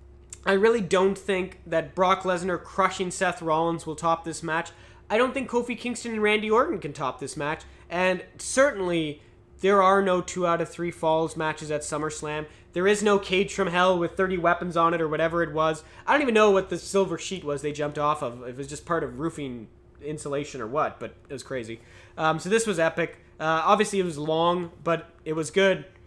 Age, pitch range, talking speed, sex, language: 20-39, 155-190 Hz, 215 wpm, male, English